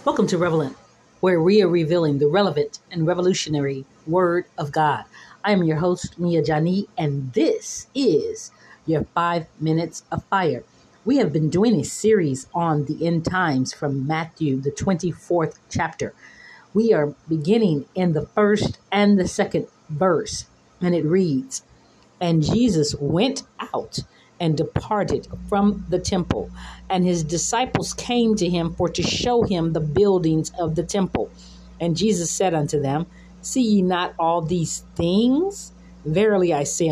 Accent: American